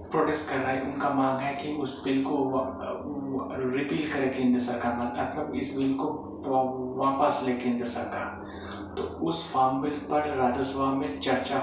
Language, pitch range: Hindi, 125-140 Hz